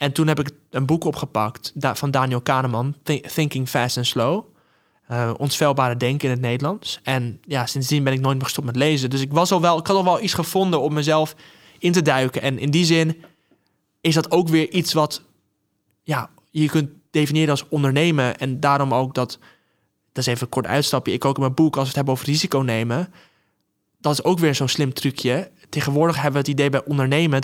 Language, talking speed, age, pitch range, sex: Dutch, 215 wpm, 20-39, 130-155 Hz, male